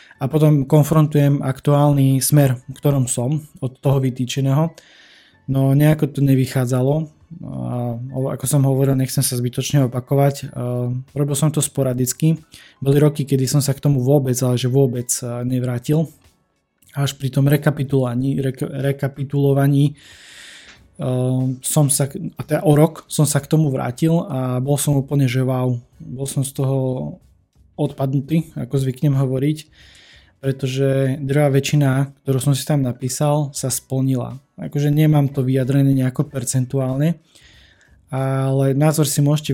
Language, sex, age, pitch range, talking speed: Slovak, male, 20-39, 130-145 Hz, 140 wpm